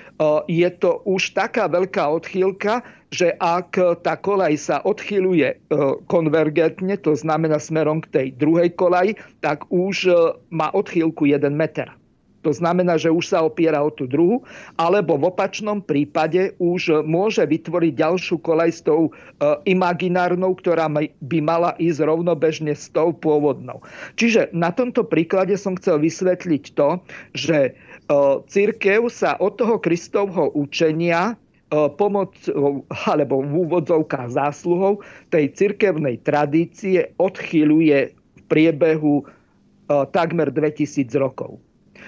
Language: Slovak